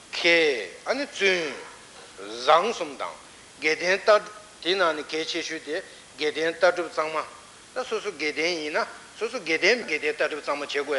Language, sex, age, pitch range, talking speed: Italian, male, 60-79, 150-200 Hz, 85 wpm